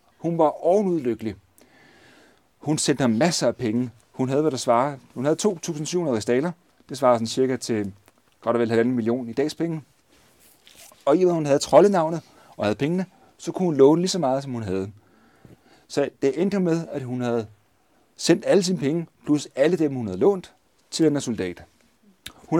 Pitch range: 115-170 Hz